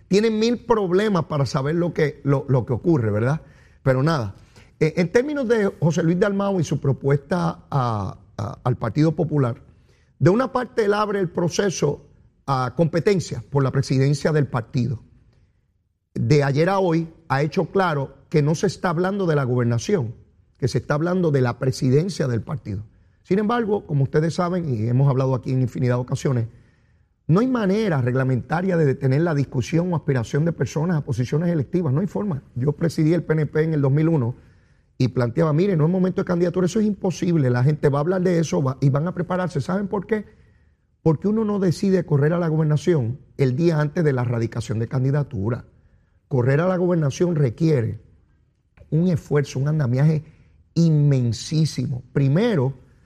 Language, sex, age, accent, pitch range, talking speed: Spanish, male, 30-49, American, 130-175 Hz, 170 wpm